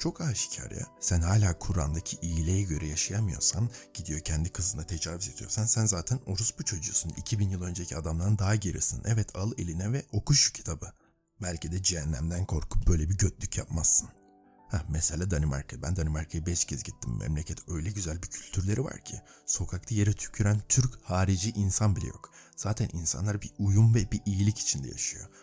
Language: Turkish